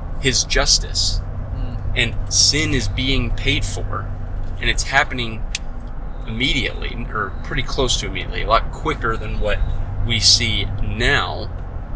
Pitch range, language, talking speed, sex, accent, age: 100-120 Hz, English, 125 wpm, male, American, 20-39